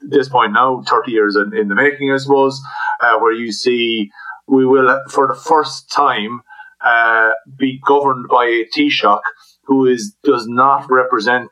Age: 30-49